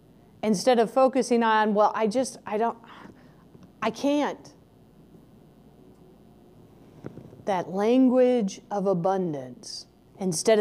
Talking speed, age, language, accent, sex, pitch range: 90 wpm, 40-59, English, American, female, 205-275 Hz